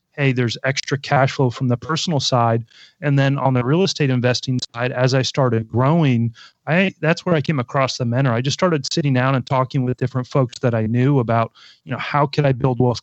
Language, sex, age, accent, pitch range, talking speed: English, male, 30-49, American, 125-145 Hz, 230 wpm